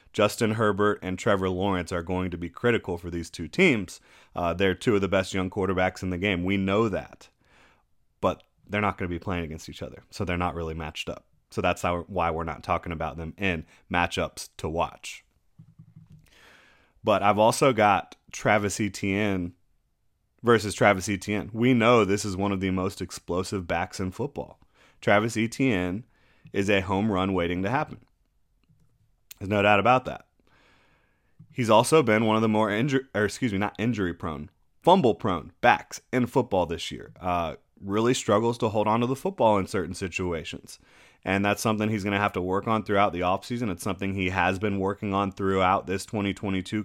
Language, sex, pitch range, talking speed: English, male, 90-105 Hz, 190 wpm